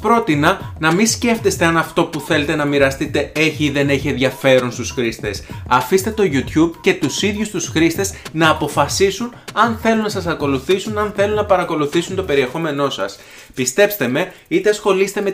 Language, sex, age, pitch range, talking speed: Greek, male, 30-49, 135-195 Hz, 170 wpm